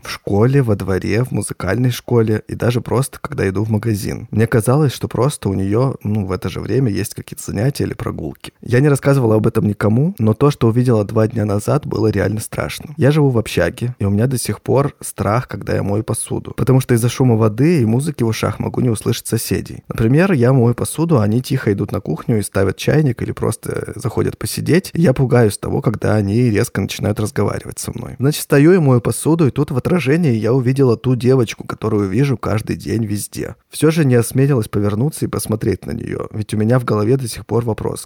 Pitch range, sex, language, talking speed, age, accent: 105-135 Hz, male, Russian, 215 wpm, 20-39, native